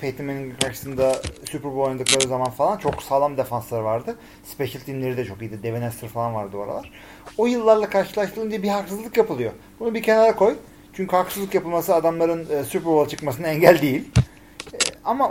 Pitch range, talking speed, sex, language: 135-195 Hz, 160 wpm, male, Turkish